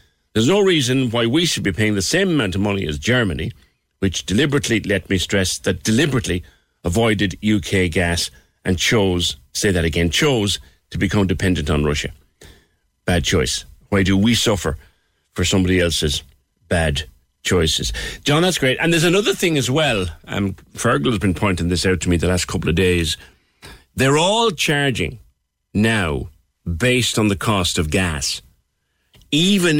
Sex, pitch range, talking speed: male, 85-115 Hz, 160 wpm